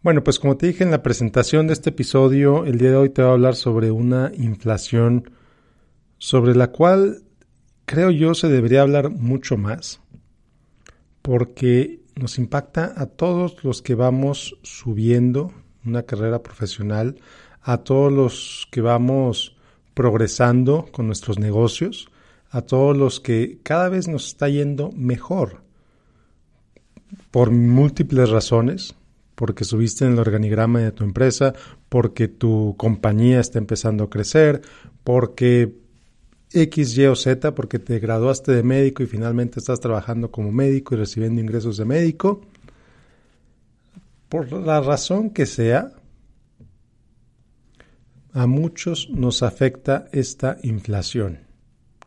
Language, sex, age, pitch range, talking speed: Spanish, male, 50-69, 115-140 Hz, 130 wpm